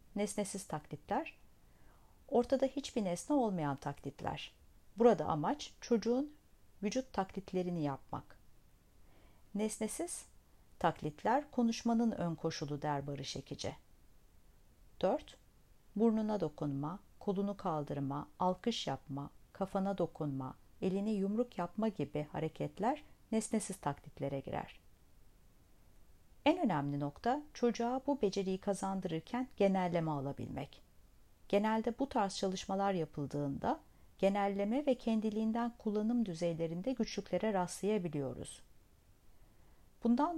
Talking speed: 90 wpm